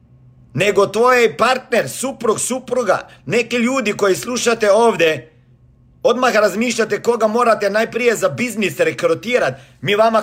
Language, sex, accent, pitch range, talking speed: Croatian, male, native, 165-235 Hz, 115 wpm